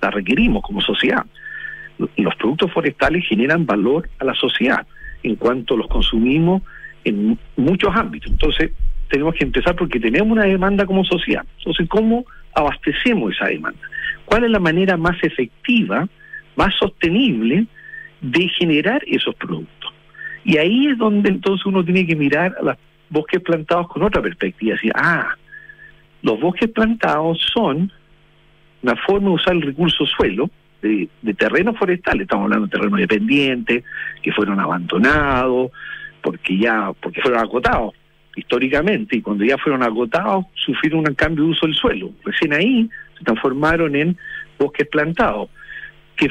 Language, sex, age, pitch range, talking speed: Spanish, male, 50-69, 150-215 Hz, 150 wpm